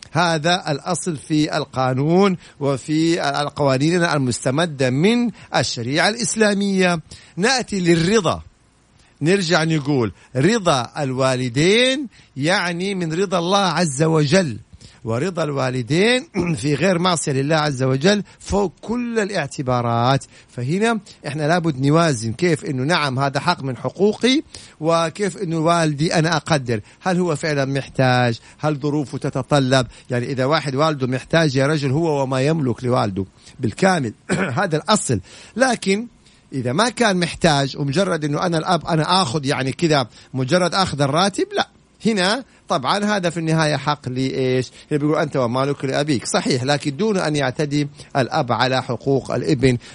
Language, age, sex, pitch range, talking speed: Arabic, 50-69, male, 130-180 Hz, 130 wpm